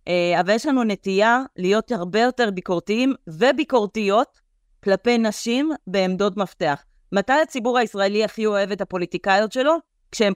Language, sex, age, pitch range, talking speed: Hebrew, female, 30-49, 195-255 Hz, 125 wpm